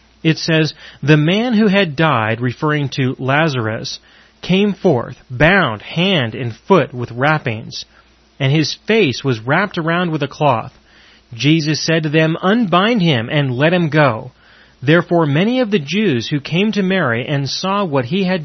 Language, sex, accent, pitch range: English, male, American, 130-180 Hz